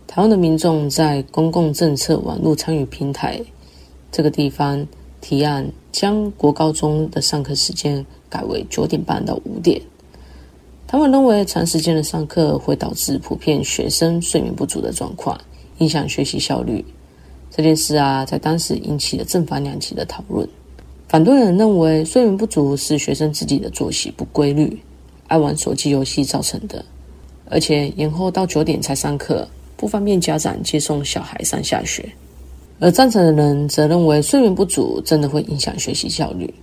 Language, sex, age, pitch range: Chinese, female, 20-39, 135-165 Hz